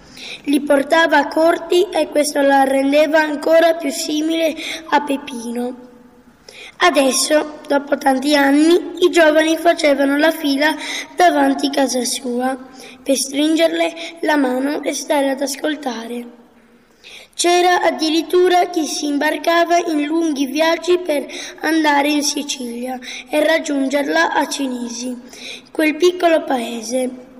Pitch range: 265-315 Hz